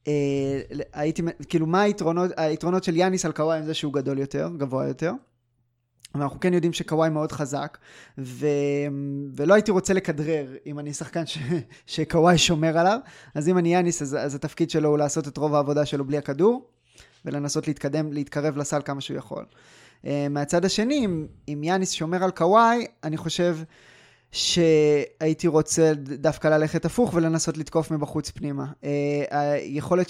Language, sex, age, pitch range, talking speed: Hebrew, male, 20-39, 145-170 Hz, 160 wpm